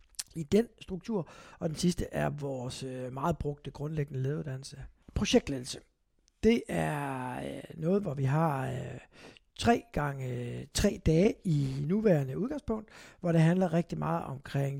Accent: native